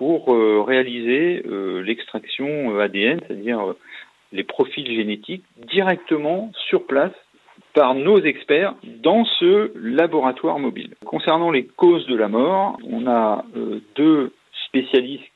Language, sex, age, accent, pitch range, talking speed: French, male, 40-59, French, 120-190 Hz, 110 wpm